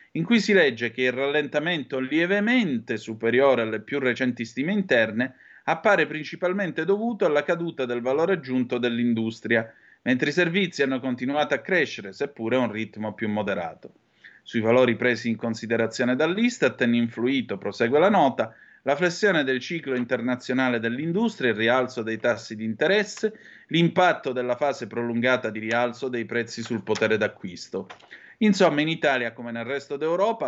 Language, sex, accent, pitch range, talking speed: Italian, male, native, 120-175 Hz, 150 wpm